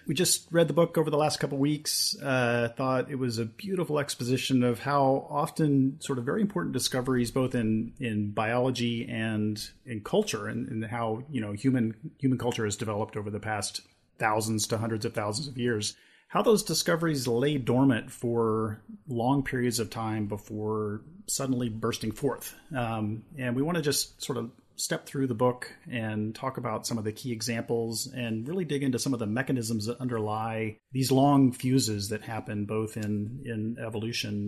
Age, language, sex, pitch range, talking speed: 40-59, English, male, 110-135 Hz, 185 wpm